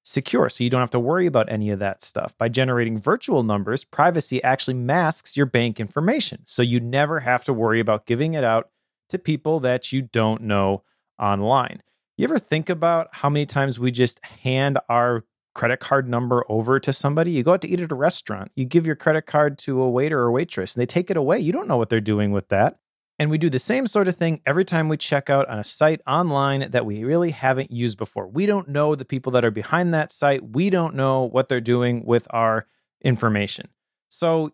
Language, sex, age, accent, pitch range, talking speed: English, male, 30-49, American, 120-160 Hz, 225 wpm